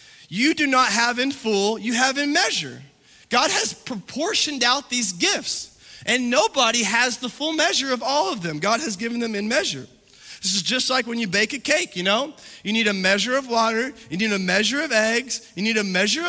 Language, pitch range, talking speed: English, 200-265 Hz, 215 wpm